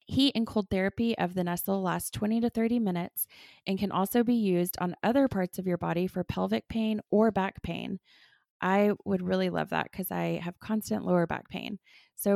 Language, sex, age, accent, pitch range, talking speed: English, female, 20-39, American, 185-225 Hz, 205 wpm